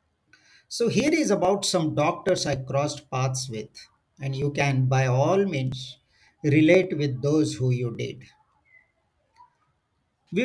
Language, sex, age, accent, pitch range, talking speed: English, male, 50-69, Indian, 130-155 Hz, 130 wpm